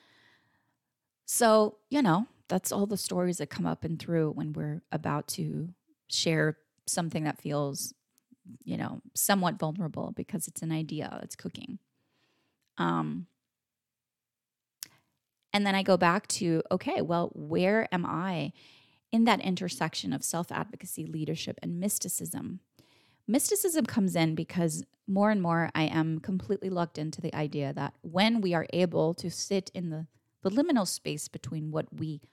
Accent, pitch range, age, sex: American, 155-195 Hz, 20-39, female